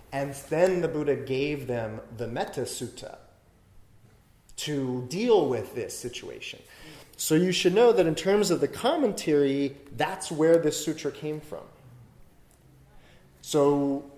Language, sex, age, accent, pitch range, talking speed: English, male, 30-49, American, 130-185 Hz, 125 wpm